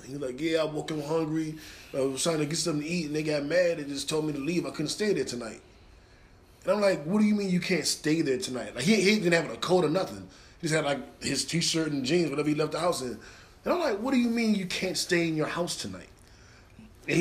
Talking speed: 275 wpm